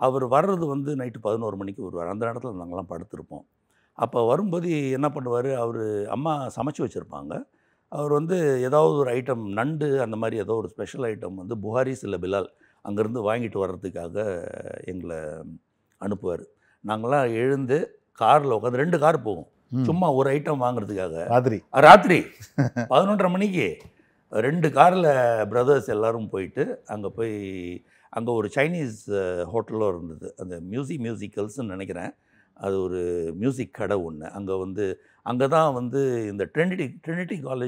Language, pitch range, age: Tamil, 105-145 Hz, 60-79